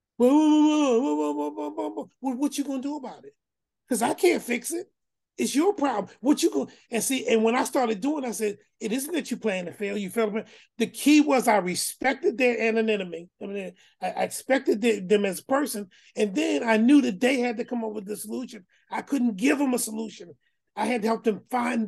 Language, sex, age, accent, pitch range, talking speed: English, male, 30-49, American, 205-255 Hz, 210 wpm